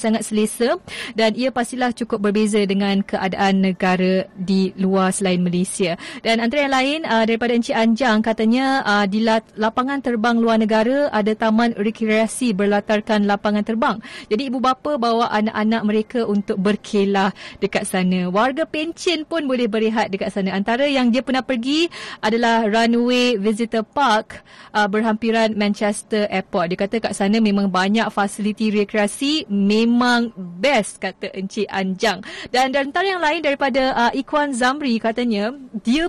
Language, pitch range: Malay, 210-250 Hz